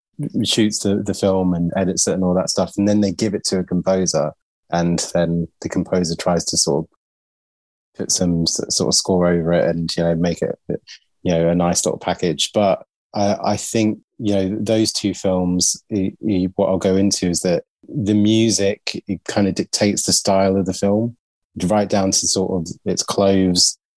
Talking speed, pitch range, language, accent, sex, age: 200 wpm, 90-105 Hz, English, British, male, 20-39